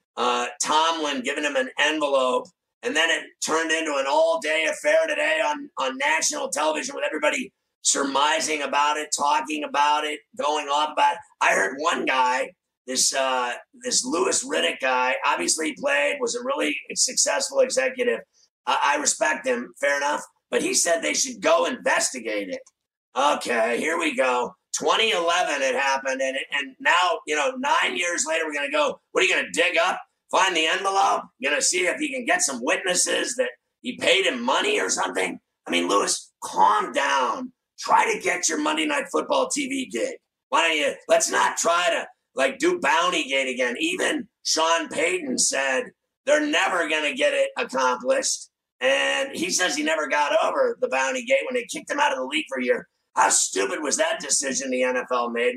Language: English